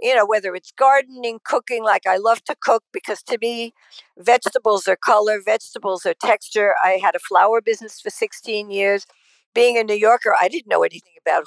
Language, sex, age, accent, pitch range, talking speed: English, female, 60-79, American, 190-270 Hz, 195 wpm